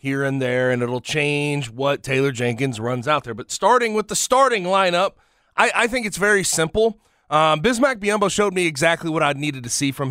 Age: 30-49